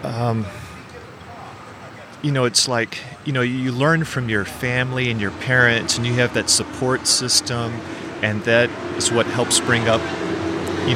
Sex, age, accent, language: male, 40-59, American, English